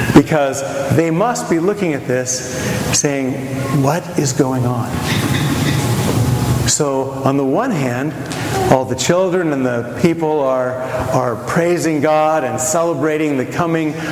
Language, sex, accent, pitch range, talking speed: English, male, American, 125-155 Hz, 130 wpm